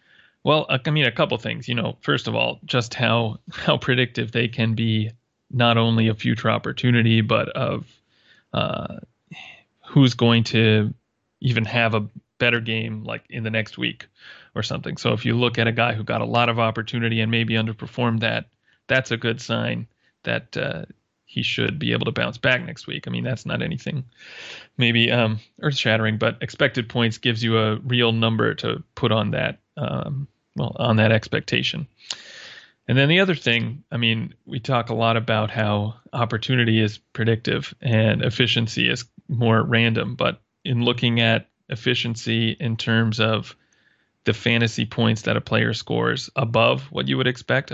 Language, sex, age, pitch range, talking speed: English, male, 30-49, 110-125 Hz, 175 wpm